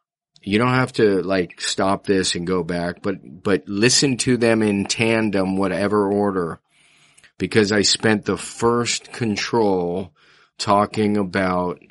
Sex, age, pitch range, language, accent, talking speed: male, 40-59, 95-110 Hz, English, American, 135 wpm